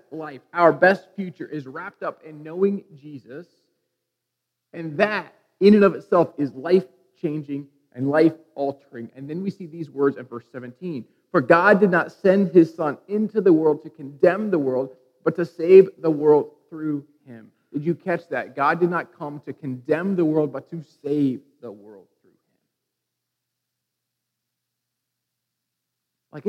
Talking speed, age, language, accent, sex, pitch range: 165 wpm, 30-49, English, American, male, 140-175 Hz